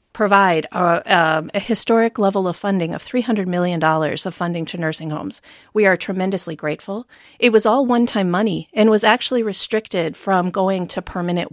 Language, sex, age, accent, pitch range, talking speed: English, female, 40-59, American, 170-200 Hz, 165 wpm